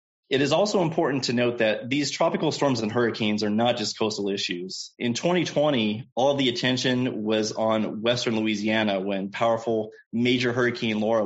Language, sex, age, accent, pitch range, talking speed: English, male, 30-49, American, 105-130 Hz, 165 wpm